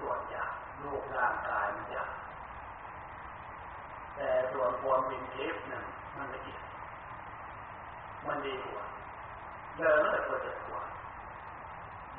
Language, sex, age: Thai, male, 40-59